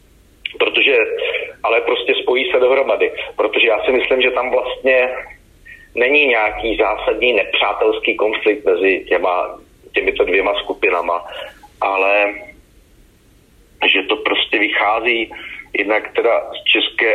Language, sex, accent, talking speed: Czech, male, native, 110 wpm